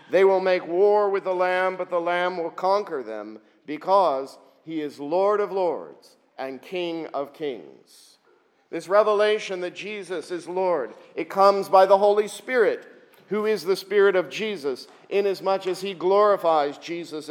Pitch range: 170-200 Hz